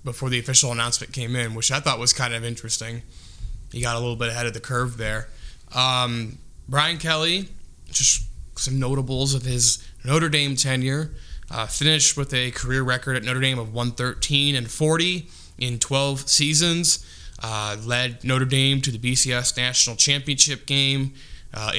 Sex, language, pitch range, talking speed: male, English, 115-135 Hz, 165 wpm